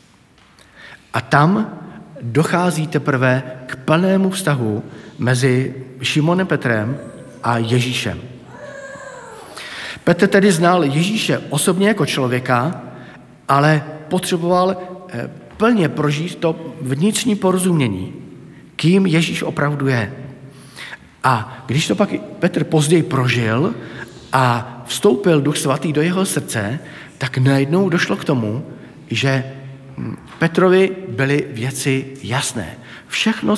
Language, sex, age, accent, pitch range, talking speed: Czech, male, 50-69, native, 130-175 Hz, 100 wpm